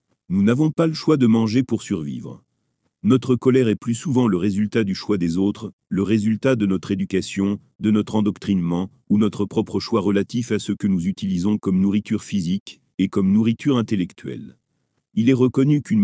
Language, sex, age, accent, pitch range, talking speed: French, male, 40-59, French, 100-125 Hz, 185 wpm